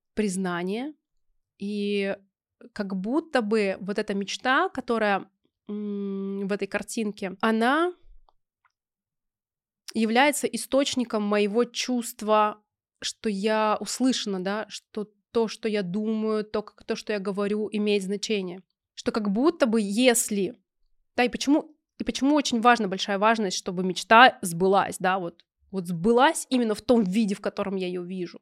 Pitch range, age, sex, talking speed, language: 195-235 Hz, 20-39, female, 135 wpm, Russian